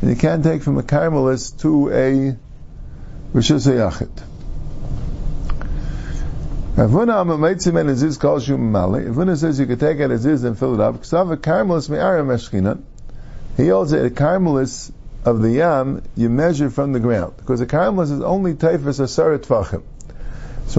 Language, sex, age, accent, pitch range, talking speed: English, male, 50-69, American, 130-170 Hz, 120 wpm